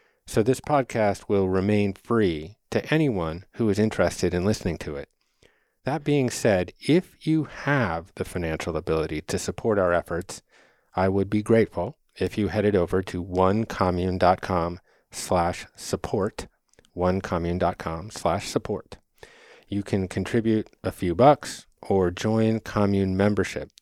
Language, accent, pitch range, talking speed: English, American, 90-110 Hz, 130 wpm